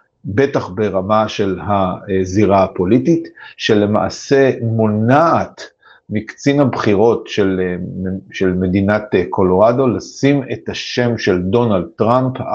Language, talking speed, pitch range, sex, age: Hebrew, 90 wpm, 105-135 Hz, male, 50-69